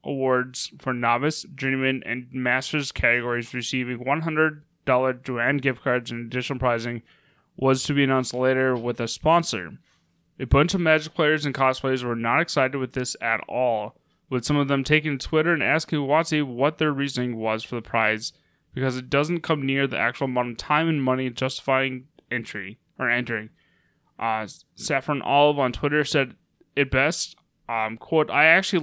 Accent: American